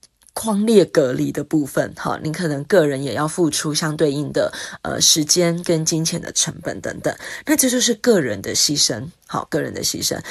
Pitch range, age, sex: 155-195 Hz, 20-39, female